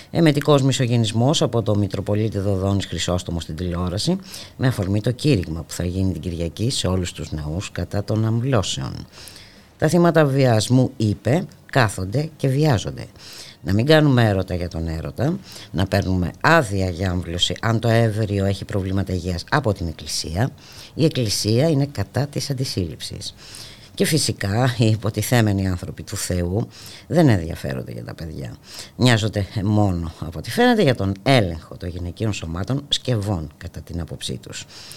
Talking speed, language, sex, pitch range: 150 wpm, Greek, female, 90-125 Hz